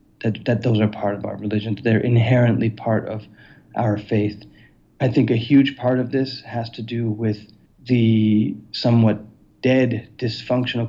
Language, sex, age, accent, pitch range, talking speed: English, male, 40-59, American, 105-120 Hz, 160 wpm